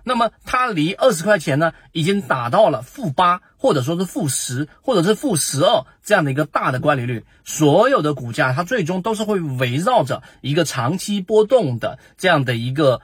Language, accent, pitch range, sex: Chinese, native, 125-175 Hz, male